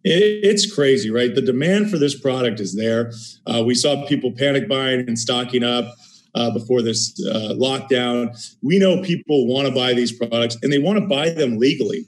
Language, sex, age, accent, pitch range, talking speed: English, male, 40-59, American, 120-140 Hz, 195 wpm